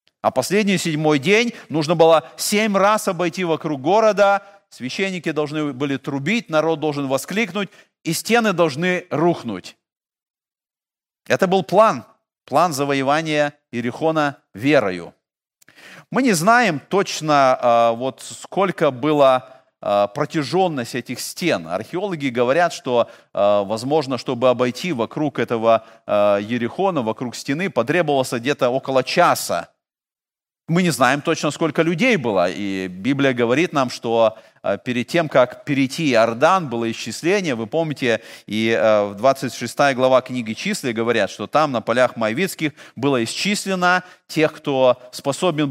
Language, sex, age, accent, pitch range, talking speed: Russian, male, 40-59, native, 125-180 Hz, 120 wpm